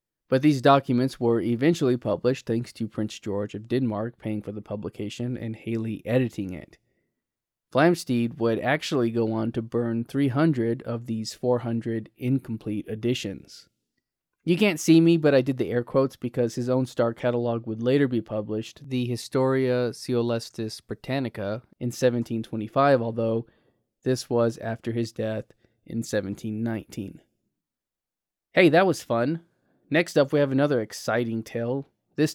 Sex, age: male, 20-39